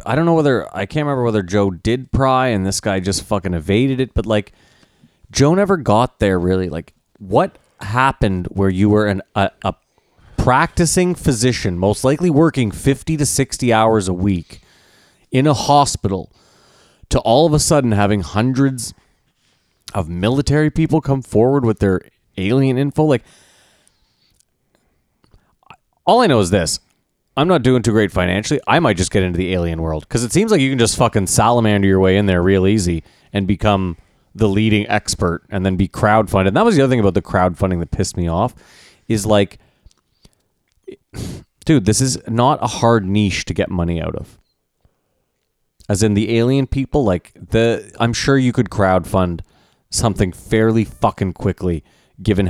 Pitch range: 95-130 Hz